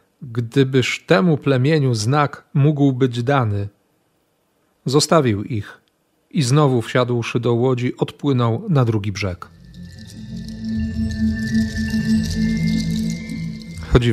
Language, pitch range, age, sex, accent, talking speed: Polish, 110-130 Hz, 40-59, male, native, 80 wpm